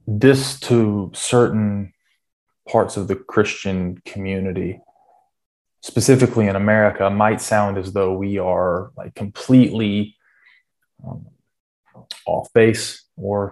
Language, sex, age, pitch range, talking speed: English, male, 20-39, 100-110 Hz, 100 wpm